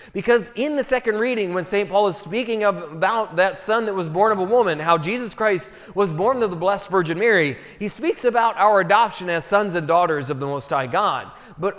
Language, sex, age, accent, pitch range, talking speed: English, male, 30-49, American, 170-215 Hz, 230 wpm